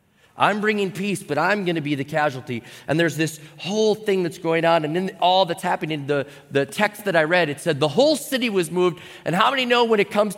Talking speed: 250 wpm